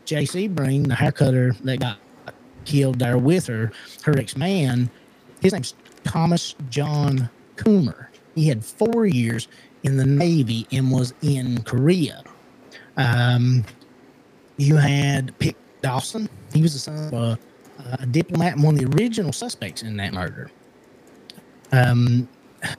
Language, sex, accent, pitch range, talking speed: English, male, American, 125-150 Hz, 135 wpm